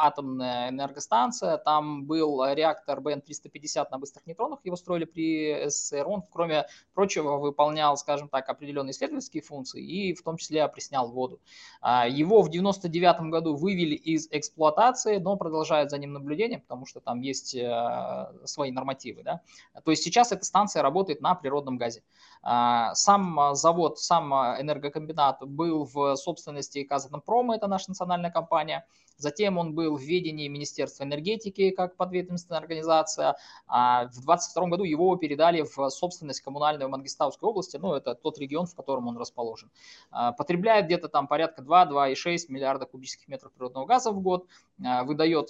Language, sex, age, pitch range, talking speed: Russian, male, 20-39, 135-175 Hz, 150 wpm